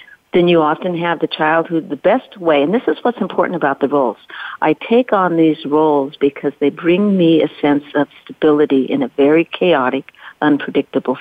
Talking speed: 195 wpm